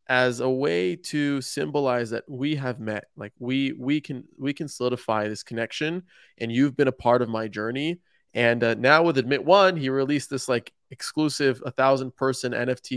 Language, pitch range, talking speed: English, 120-145 Hz, 190 wpm